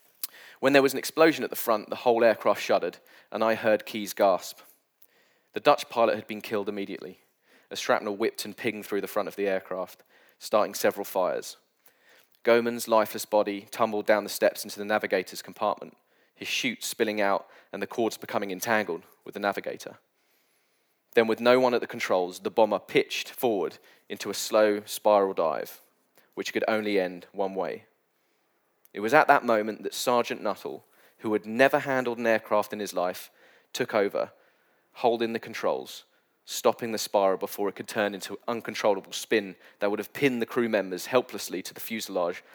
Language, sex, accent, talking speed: English, male, British, 180 wpm